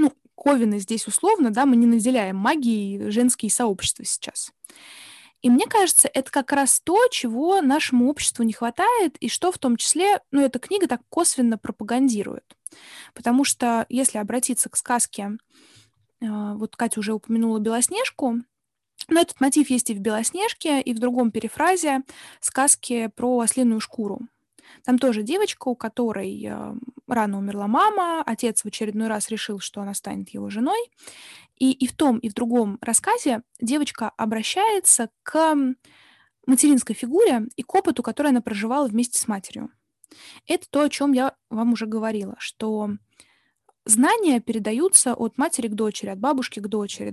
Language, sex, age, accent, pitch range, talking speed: Russian, female, 20-39, native, 220-280 Hz, 150 wpm